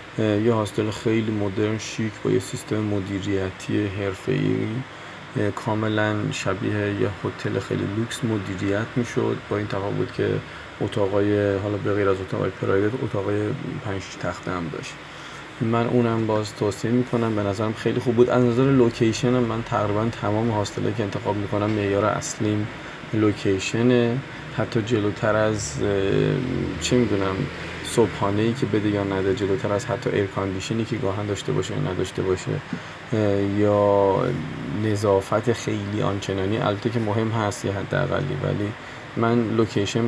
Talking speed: 140 wpm